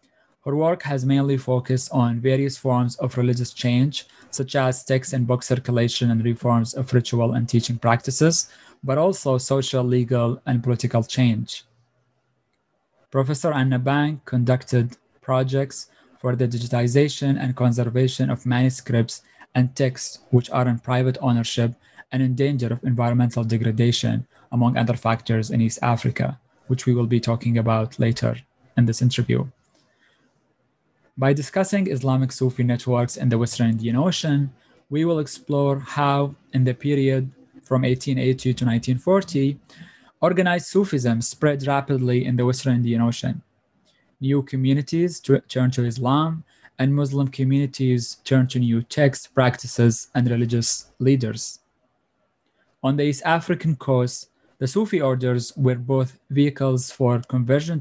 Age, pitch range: 20-39, 120-135 Hz